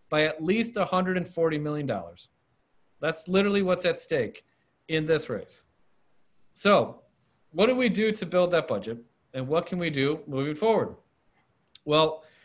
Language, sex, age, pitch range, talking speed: English, male, 40-59, 145-180 Hz, 145 wpm